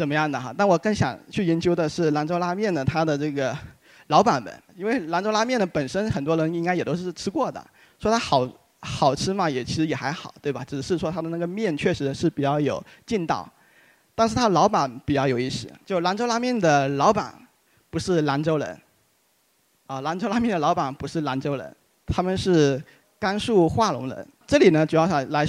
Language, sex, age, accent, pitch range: Chinese, male, 30-49, native, 150-200 Hz